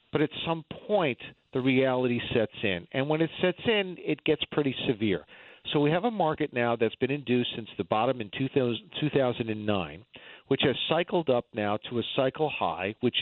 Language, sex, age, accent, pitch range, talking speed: English, male, 50-69, American, 105-140 Hz, 190 wpm